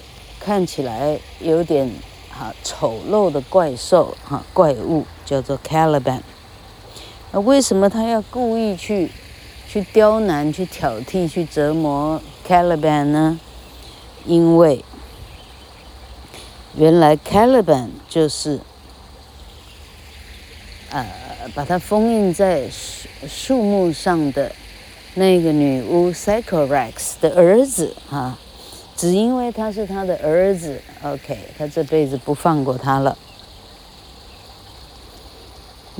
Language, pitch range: Chinese, 125-180 Hz